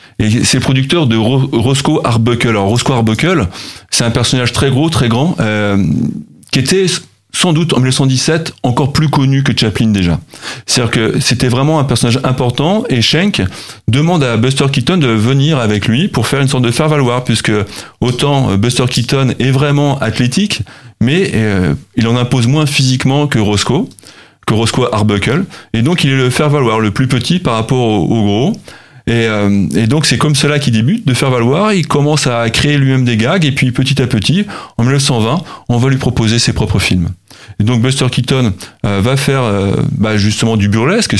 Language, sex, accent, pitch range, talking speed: French, male, French, 110-140 Hz, 190 wpm